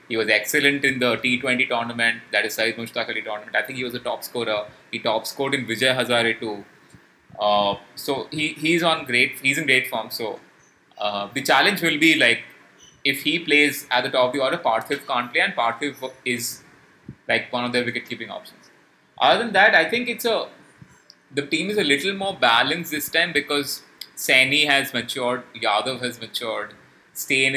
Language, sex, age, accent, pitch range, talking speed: English, male, 20-39, Indian, 120-150 Hz, 200 wpm